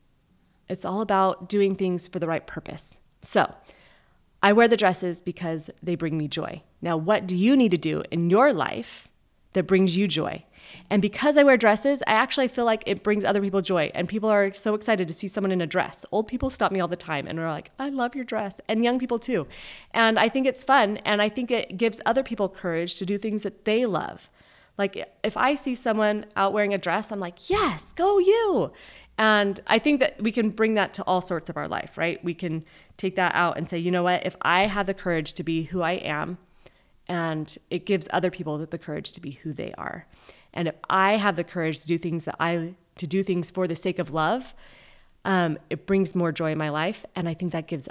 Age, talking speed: 30-49, 235 wpm